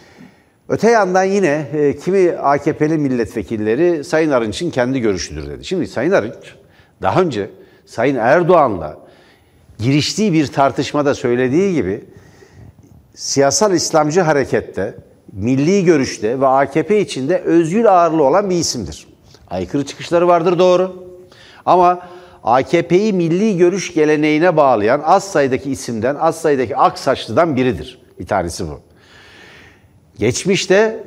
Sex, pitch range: male, 130-190 Hz